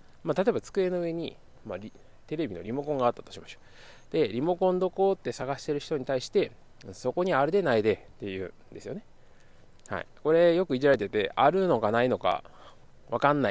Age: 20-39